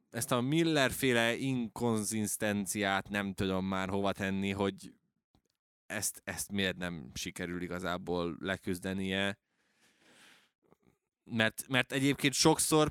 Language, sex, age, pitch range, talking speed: Hungarian, male, 20-39, 95-120 Hz, 100 wpm